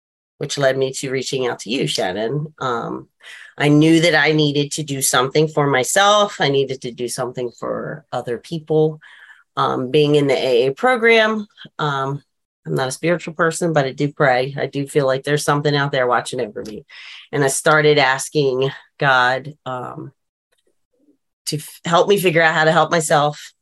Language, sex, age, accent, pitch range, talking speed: English, female, 30-49, American, 130-160 Hz, 180 wpm